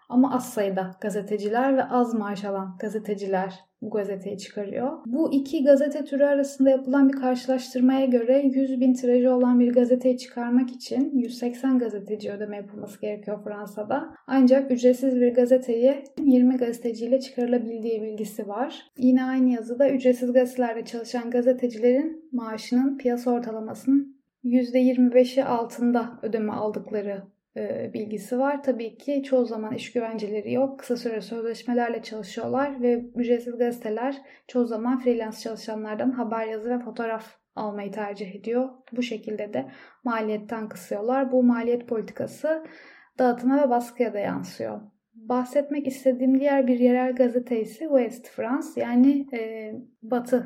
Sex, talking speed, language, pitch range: female, 125 wpm, Turkish, 225-265 Hz